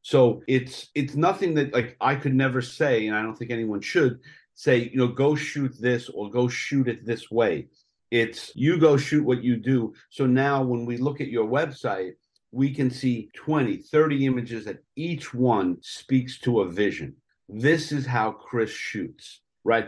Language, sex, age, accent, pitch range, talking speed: English, male, 50-69, American, 120-145 Hz, 185 wpm